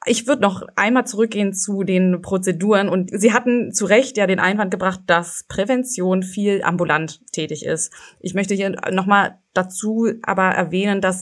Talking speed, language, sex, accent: 165 wpm, German, female, German